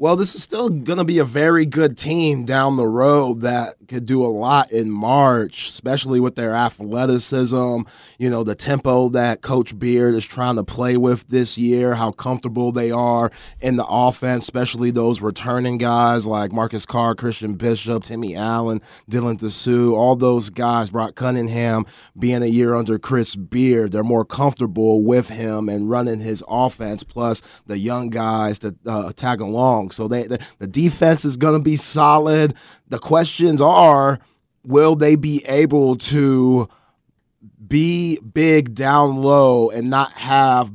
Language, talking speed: English, 160 wpm